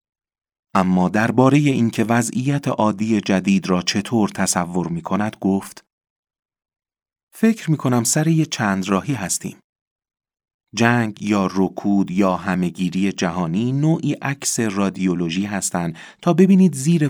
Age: 40-59